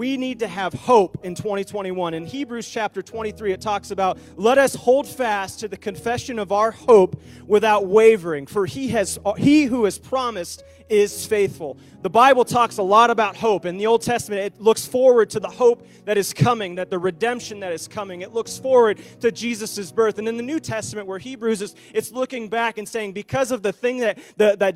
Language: English